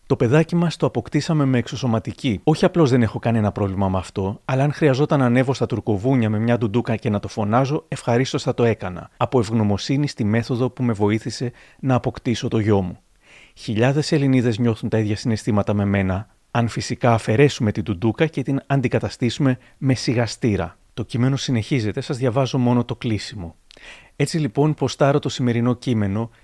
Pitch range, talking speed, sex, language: 110-135 Hz, 175 wpm, male, Greek